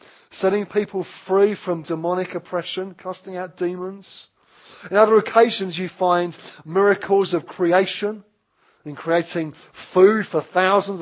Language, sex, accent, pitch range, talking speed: English, male, British, 130-185 Hz, 120 wpm